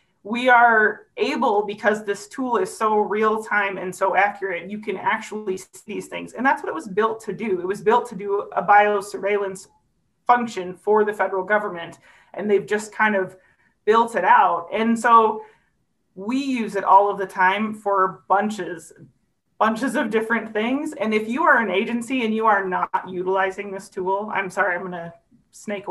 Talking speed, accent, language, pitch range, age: 185 wpm, American, English, 190-220 Hz, 30-49